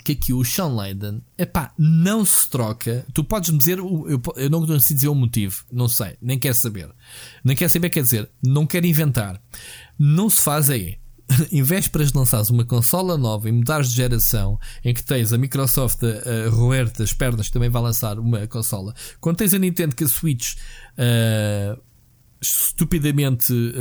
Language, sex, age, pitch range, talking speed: Portuguese, male, 20-39, 120-165 Hz, 180 wpm